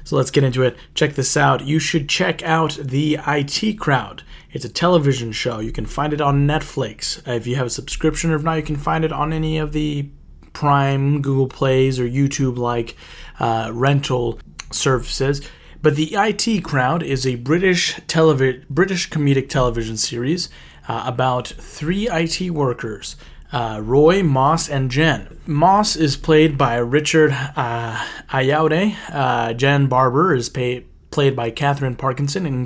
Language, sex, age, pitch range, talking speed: English, male, 30-49, 125-150 Hz, 160 wpm